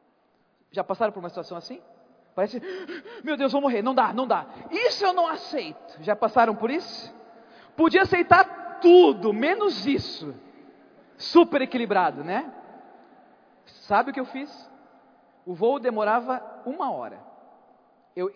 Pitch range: 210-275 Hz